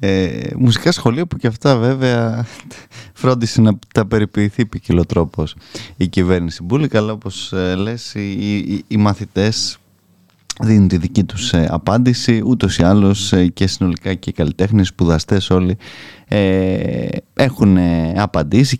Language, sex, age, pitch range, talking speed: Greek, male, 20-39, 90-115 Hz, 130 wpm